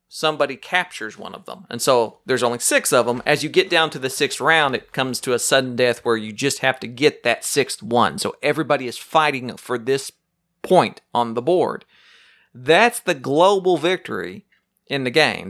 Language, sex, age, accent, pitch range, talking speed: English, male, 40-59, American, 125-175 Hz, 200 wpm